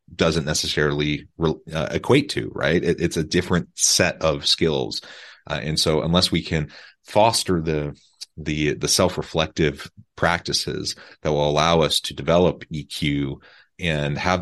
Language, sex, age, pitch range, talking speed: English, male, 30-49, 75-90 Hz, 145 wpm